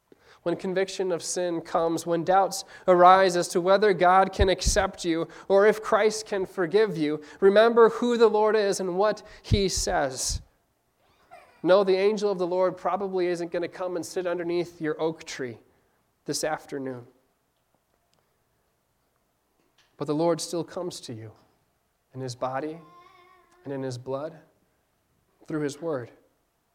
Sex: male